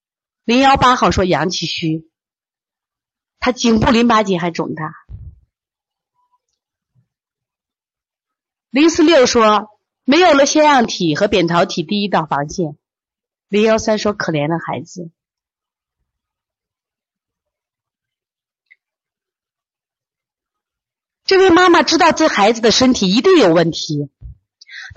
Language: Chinese